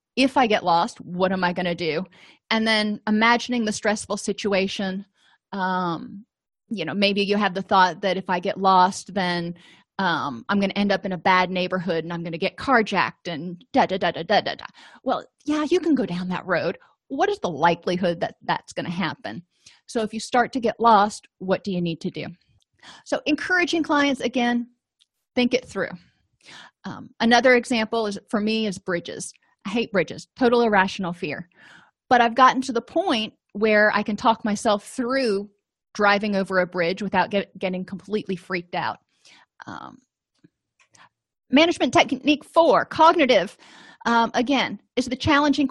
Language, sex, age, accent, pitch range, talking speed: English, female, 30-49, American, 185-240 Hz, 170 wpm